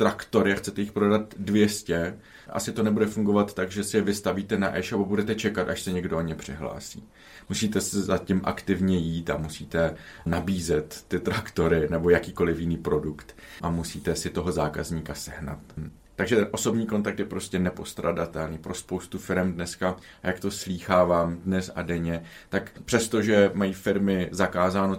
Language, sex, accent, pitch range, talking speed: Czech, male, native, 85-100 Hz, 165 wpm